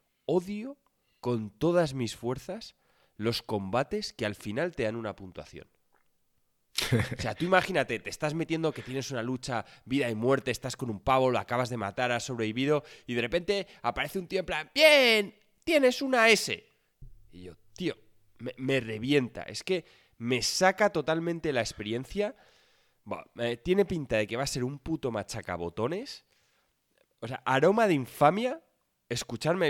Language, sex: Spanish, male